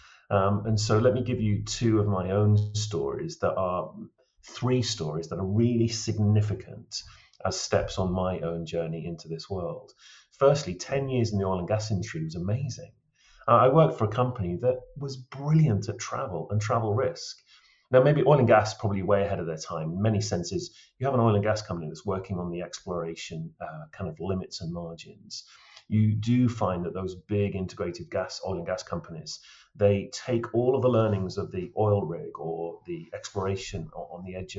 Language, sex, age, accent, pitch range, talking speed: English, male, 30-49, British, 95-120 Hz, 200 wpm